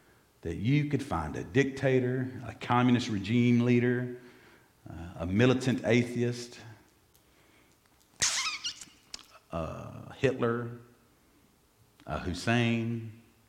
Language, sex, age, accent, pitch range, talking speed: English, male, 50-69, American, 100-130 Hz, 80 wpm